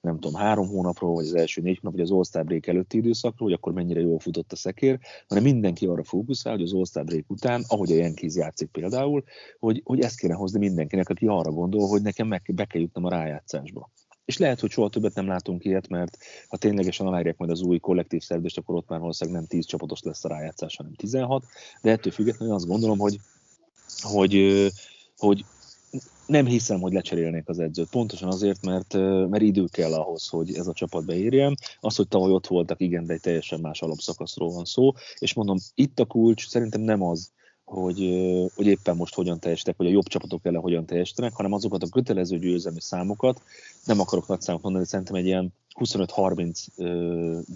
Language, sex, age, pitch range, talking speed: Hungarian, male, 30-49, 85-105 Hz, 195 wpm